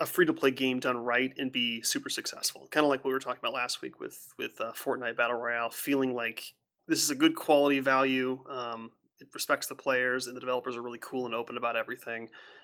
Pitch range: 125-190 Hz